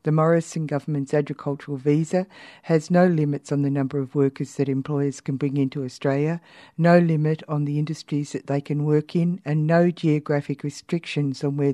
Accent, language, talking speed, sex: Australian, English, 180 wpm, female